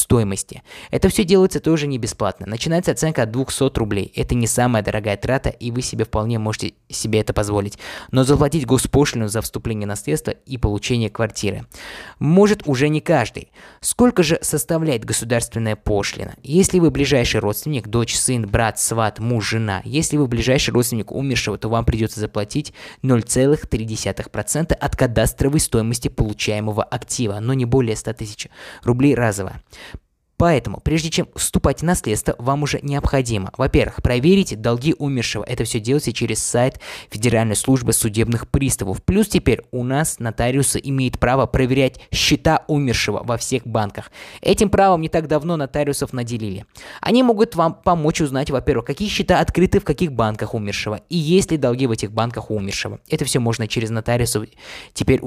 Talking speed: 155 wpm